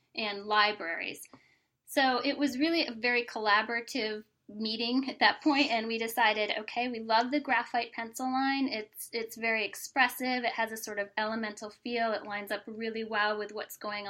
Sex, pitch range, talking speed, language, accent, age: female, 205-260 Hz, 180 wpm, English, American, 10-29